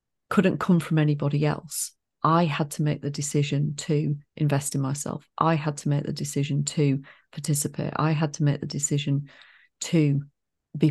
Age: 40-59